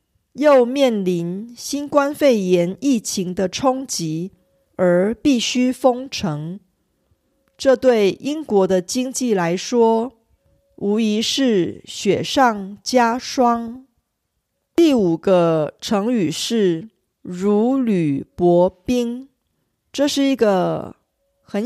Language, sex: Korean, female